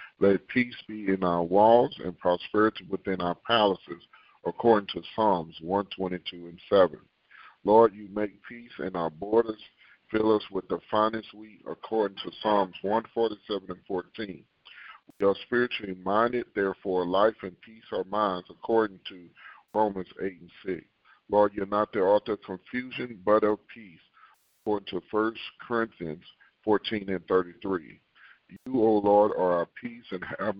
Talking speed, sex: 150 wpm, male